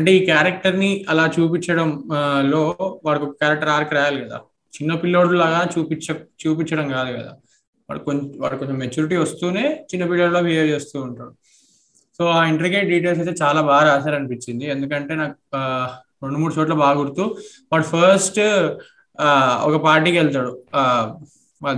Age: 20-39